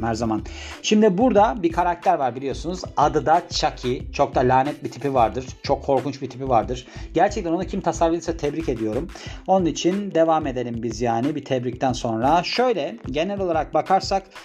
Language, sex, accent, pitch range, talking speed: Turkish, male, native, 130-190 Hz, 170 wpm